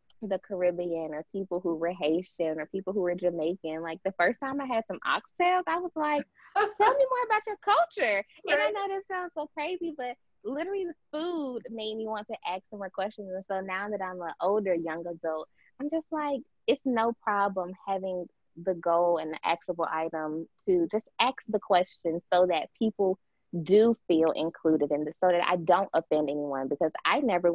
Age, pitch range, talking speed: 20-39, 170-275 Hz, 200 wpm